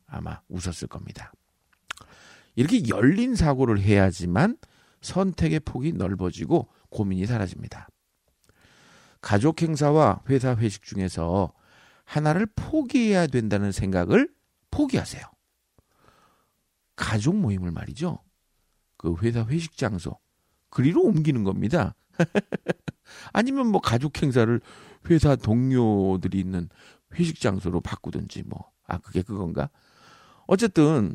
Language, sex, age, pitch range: Korean, male, 50-69, 95-145 Hz